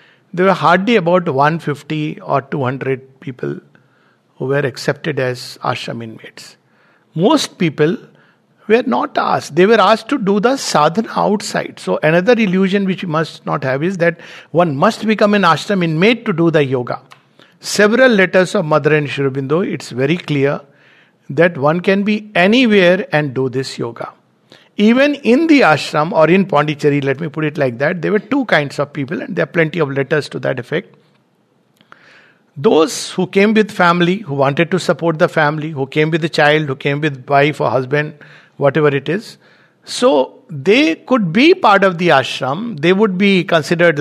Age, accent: 60-79, Indian